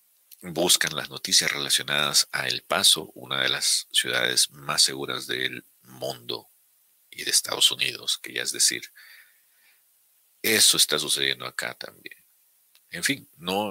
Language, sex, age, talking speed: Spanish, male, 50-69, 135 wpm